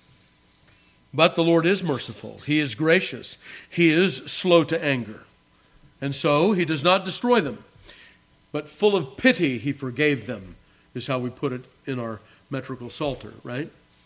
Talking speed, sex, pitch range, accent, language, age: 160 wpm, male, 135-185 Hz, American, English, 50-69